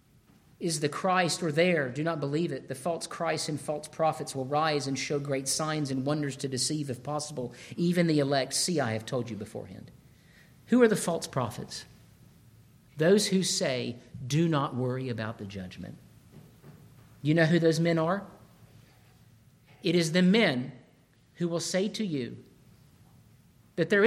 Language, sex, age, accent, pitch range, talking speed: English, male, 50-69, American, 135-205 Hz, 165 wpm